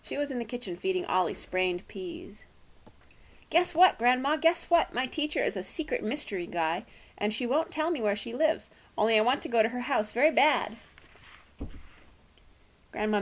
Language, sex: English, female